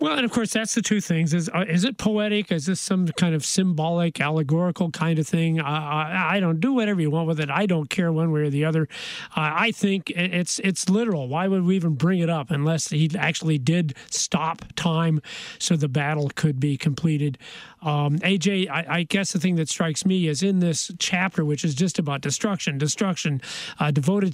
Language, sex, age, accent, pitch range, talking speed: English, male, 40-59, American, 155-185 Hz, 215 wpm